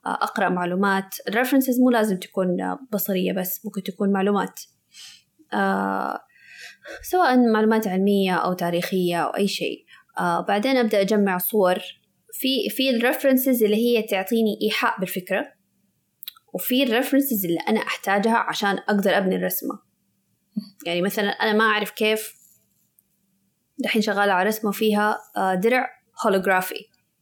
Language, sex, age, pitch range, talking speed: Arabic, female, 20-39, 185-235 Hz, 120 wpm